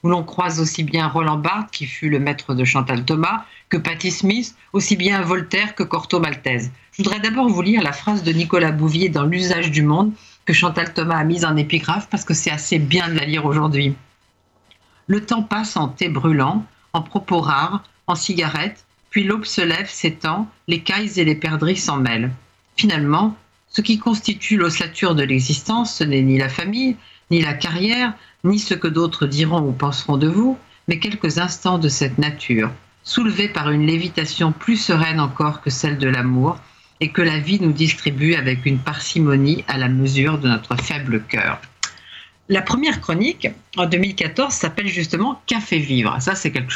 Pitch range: 145-200 Hz